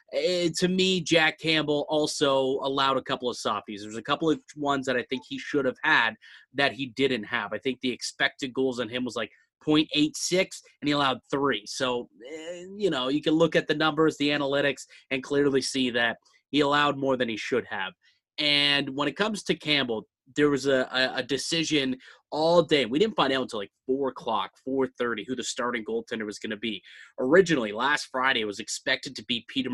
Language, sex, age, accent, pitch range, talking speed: English, male, 30-49, American, 120-150 Hz, 210 wpm